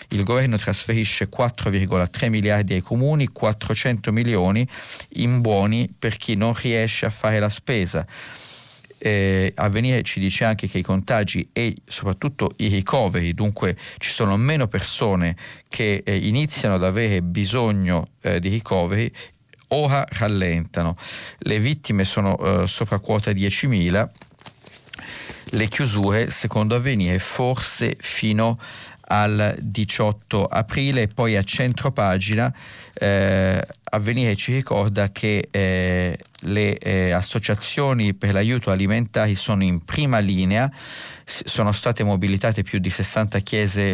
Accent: native